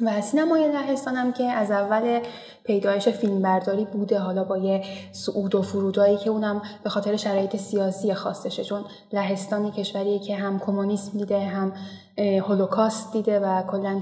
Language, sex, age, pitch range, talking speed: Persian, female, 10-29, 200-230 Hz, 150 wpm